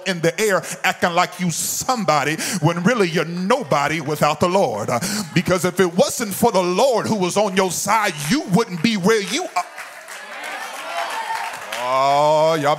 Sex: male